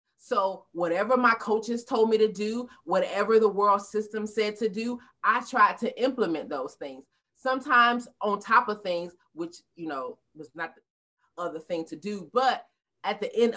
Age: 30-49